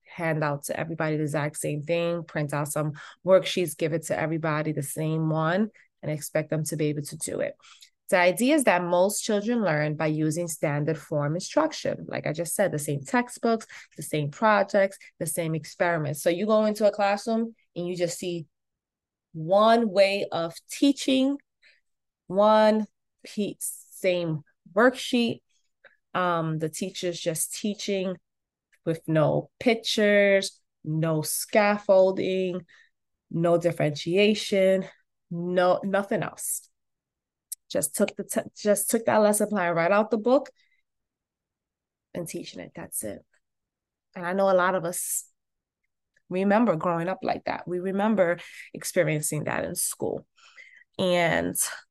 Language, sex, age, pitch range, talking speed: English, female, 20-39, 165-210 Hz, 140 wpm